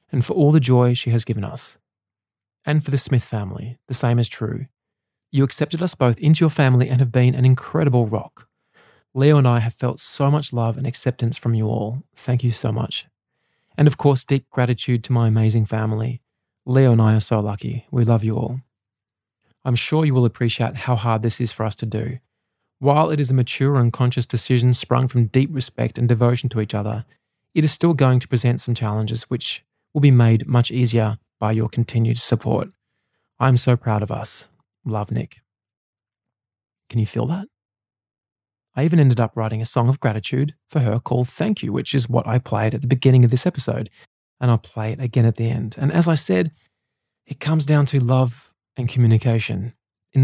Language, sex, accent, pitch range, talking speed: English, male, Australian, 110-130 Hz, 205 wpm